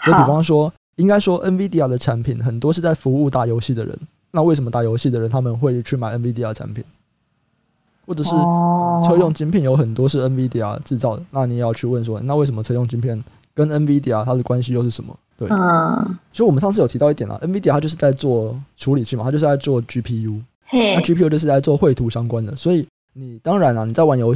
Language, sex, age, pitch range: Chinese, male, 20-39, 115-150 Hz